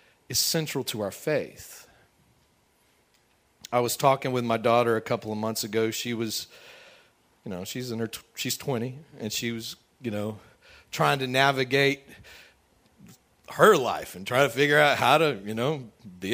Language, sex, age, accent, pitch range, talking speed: English, male, 40-59, American, 115-180 Hz, 170 wpm